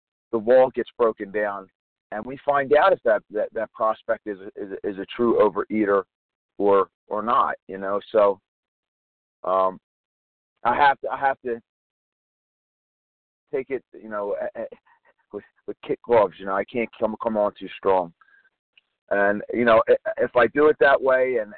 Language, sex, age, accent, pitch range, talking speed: English, male, 40-59, American, 100-130 Hz, 170 wpm